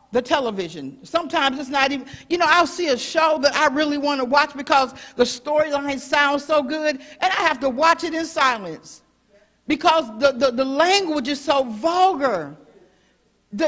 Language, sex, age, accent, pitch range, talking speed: English, female, 50-69, American, 285-360 Hz, 175 wpm